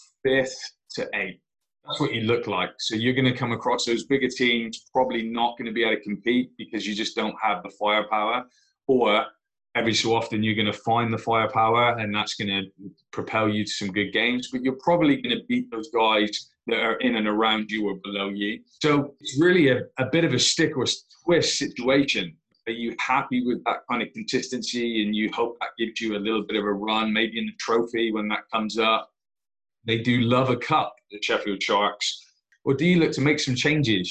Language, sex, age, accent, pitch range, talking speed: English, male, 20-39, British, 110-130 Hz, 220 wpm